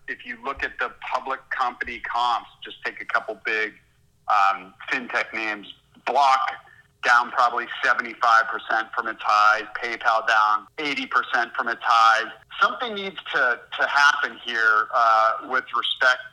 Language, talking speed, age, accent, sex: English, 140 wpm, 40-59, American, male